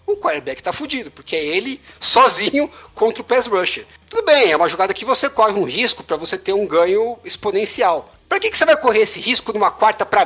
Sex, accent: male, Brazilian